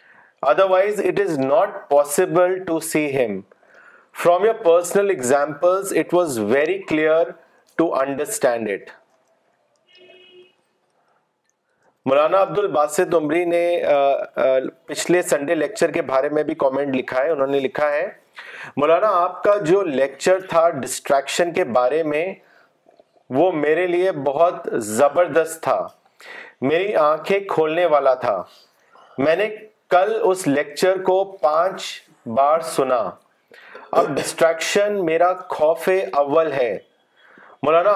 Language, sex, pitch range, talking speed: Urdu, male, 150-195 Hz, 105 wpm